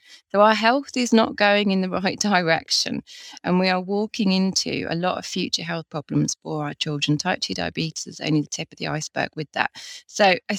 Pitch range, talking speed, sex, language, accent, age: 155-200 Hz, 215 wpm, female, English, British, 30-49